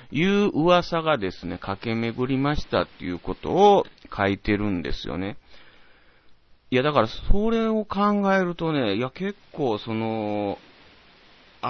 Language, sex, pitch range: Japanese, male, 95-135 Hz